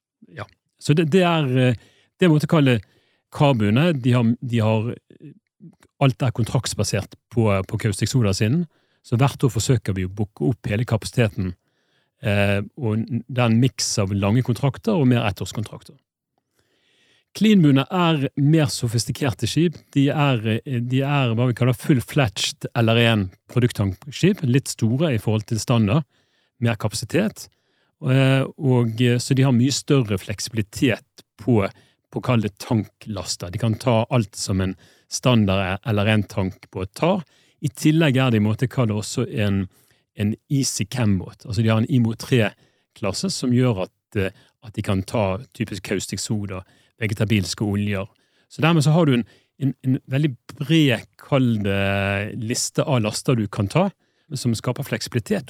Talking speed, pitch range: 150 wpm, 105-135 Hz